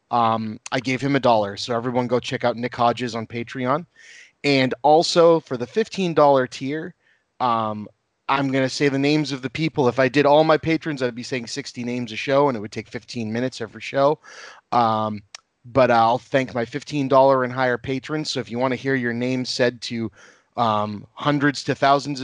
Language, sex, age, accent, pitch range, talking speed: English, male, 30-49, American, 115-140 Hz, 200 wpm